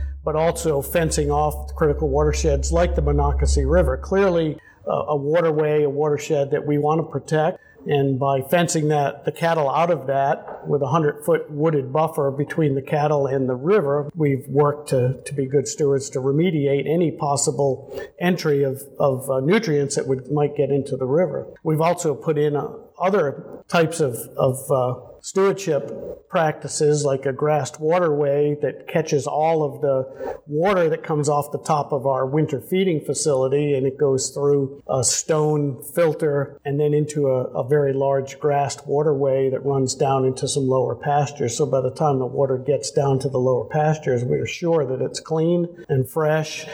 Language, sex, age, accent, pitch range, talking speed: English, male, 50-69, American, 135-155 Hz, 175 wpm